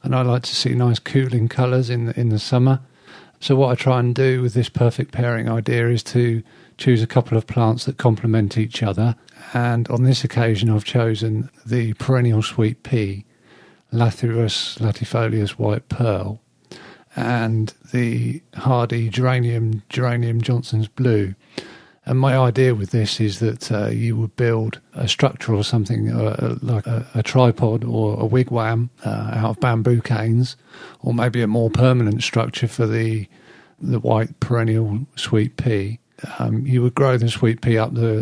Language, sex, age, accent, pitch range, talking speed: English, male, 40-59, British, 110-125 Hz, 165 wpm